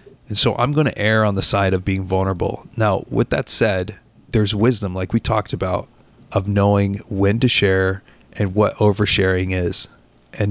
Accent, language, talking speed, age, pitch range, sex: American, English, 185 wpm, 30-49, 95-115 Hz, male